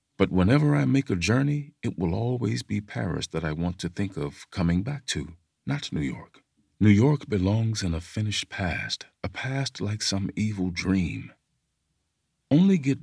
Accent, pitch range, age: American, 85-110 Hz, 50-69